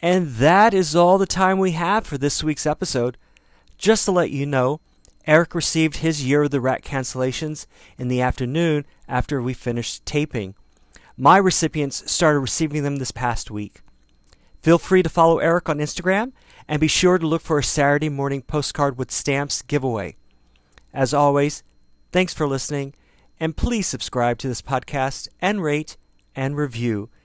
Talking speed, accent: 165 wpm, American